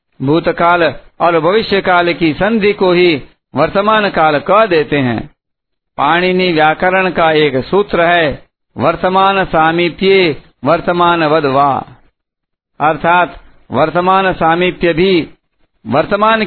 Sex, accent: male, native